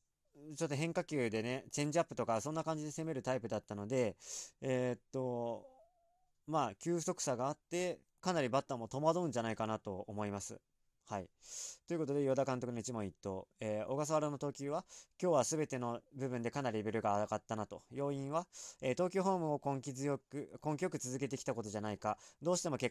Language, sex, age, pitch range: Japanese, male, 20-39, 120-155 Hz